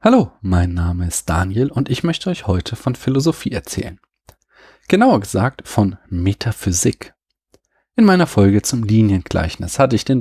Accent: German